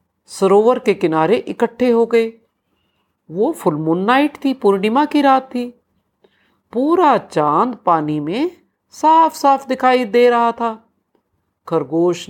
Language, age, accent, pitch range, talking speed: Hindi, 50-69, native, 175-275 Hz, 120 wpm